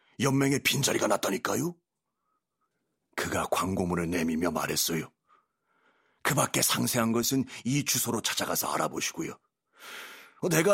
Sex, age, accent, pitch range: male, 40-59, native, 115-185 Hz